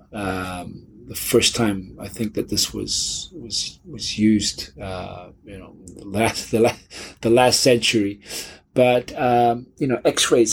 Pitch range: 95-115 Hz